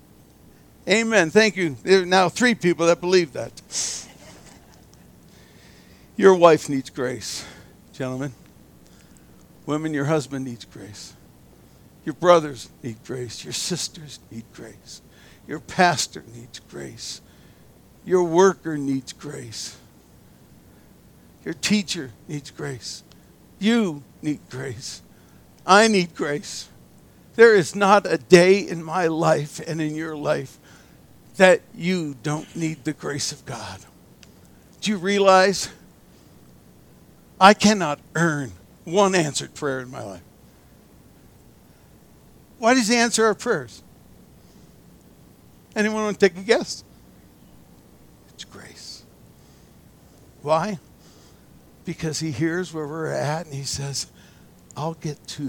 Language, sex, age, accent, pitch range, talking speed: English, male, 60-79, American, 125-185 Hz, 115 wpm